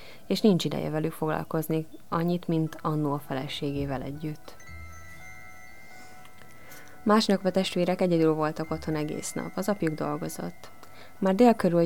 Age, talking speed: 20-39, 120 wpm